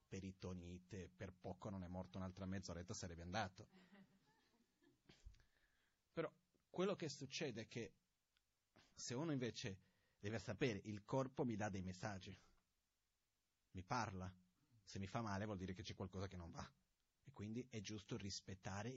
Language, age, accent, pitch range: Italian, 30-49, native, 95-155 Hz